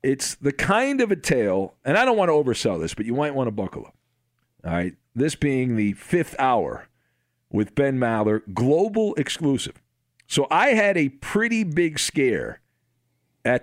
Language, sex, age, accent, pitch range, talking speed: English, male, 50-69, American, 120-155 Hz, 175 wpm